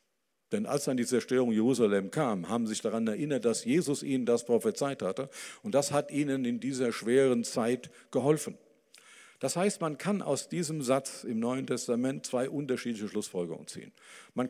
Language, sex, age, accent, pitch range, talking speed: German, male, 50-69, German, 115-145 Hz, 170 wpm